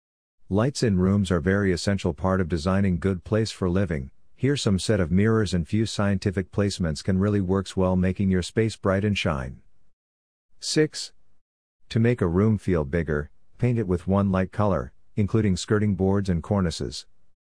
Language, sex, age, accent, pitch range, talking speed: English, male, 50-69, American, 85-105 Hz, 170 wpm